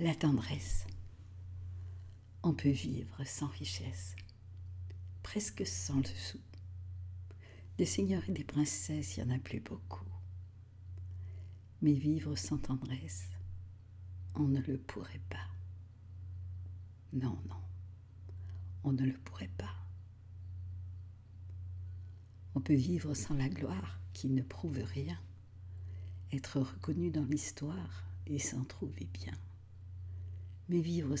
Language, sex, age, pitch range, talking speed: French, female, 60-79, 90-115 Hz, 110 wpm